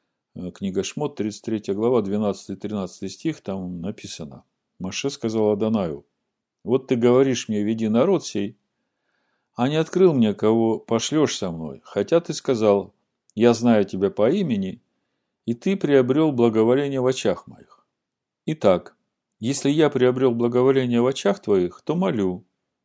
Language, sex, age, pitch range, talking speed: Russian, male, 50-69, 100-135 Hz, 135 wpm